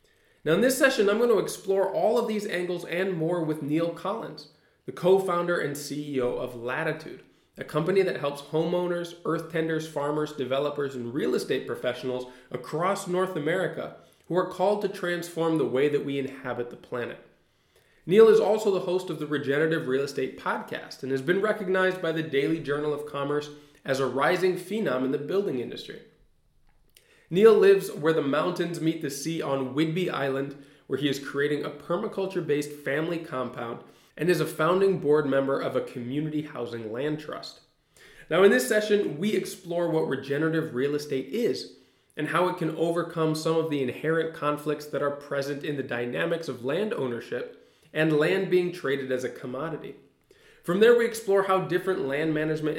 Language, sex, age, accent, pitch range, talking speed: English, male, 20-39, American, 140-180 Hz, 175 wpm